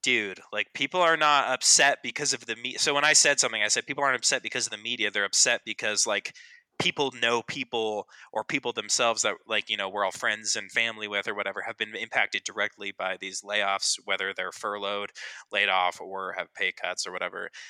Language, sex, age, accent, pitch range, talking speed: English, male, 20-39, American, 110-135 Hz, 215 wpm